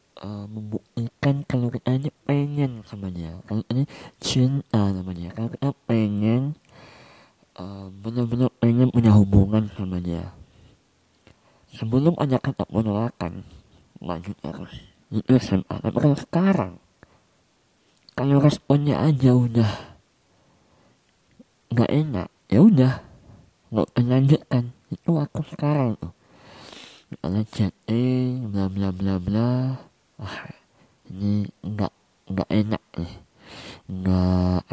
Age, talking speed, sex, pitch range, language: 20-39, 100 wpm, male, 100-130 Hz, Indonesian